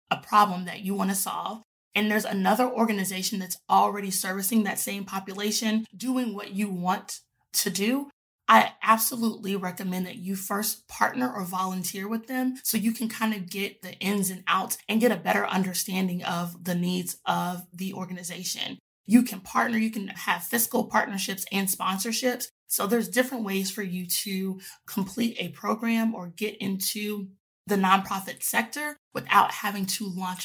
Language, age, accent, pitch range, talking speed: English, 20-39, American, 185-220 Hz, 170 wpm